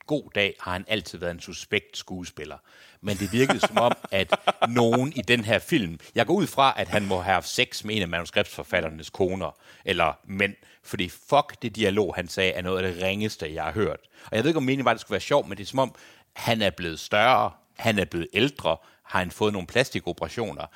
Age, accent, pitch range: 60-79, native, 90-120 Hz